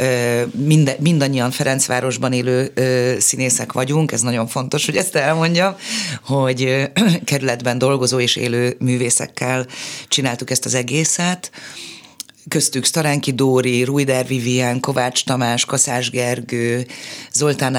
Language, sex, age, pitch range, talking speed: Hungarian, female, 30-49, 125-145 Hz, 115 wpm